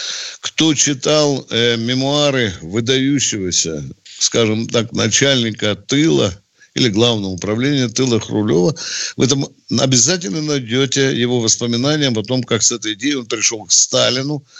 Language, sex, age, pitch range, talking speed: Russian, male, 60-79, 115-155 Hz, 125 wpm